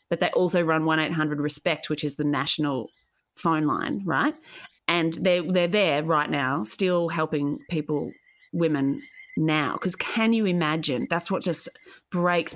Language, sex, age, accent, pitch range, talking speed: English, female, 30-49, Australian, 150-180 Hz, 160 wpm